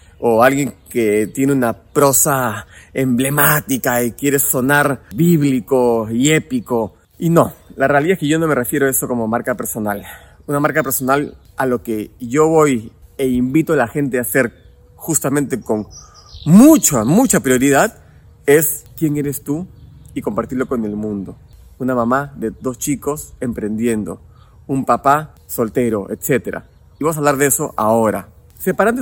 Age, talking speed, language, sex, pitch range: 30-49, 155 wpm, Spanish, male, 115-150 Hz